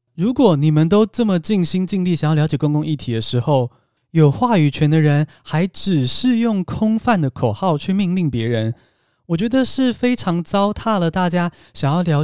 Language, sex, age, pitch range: Chinese, male, 20-39, 125-185 Hz